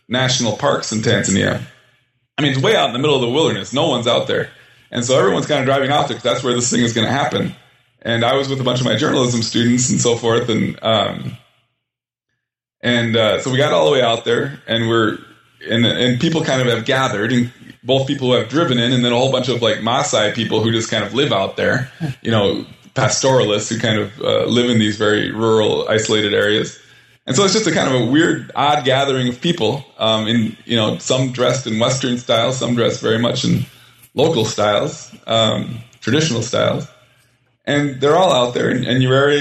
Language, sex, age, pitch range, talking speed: English, male, 20-39, 115-135 Hz, 225 wpm